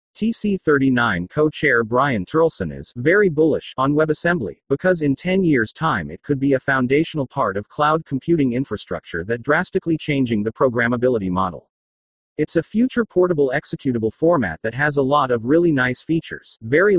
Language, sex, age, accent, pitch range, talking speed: English, male, 40-59, American, 120-165 Hz, 165 wpm